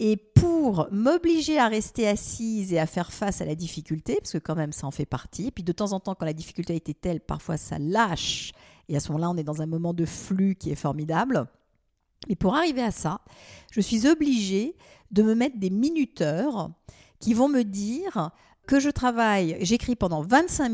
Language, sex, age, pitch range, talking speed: French, female, 50-69, 165-230 Hz, 210 wpm